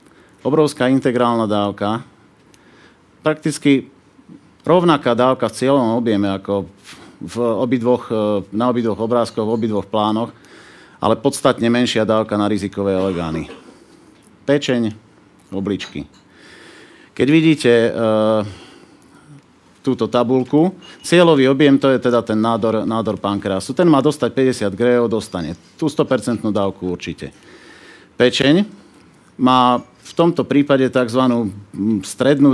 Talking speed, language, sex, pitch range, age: 110 wpm, Czech, male, 105-135 Hz, 40-59